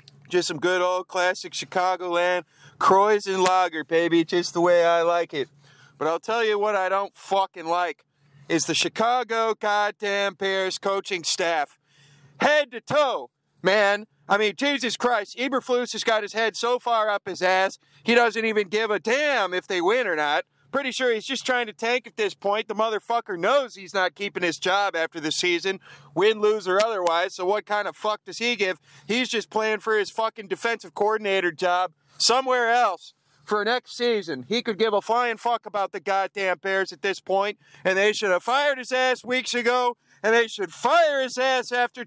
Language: English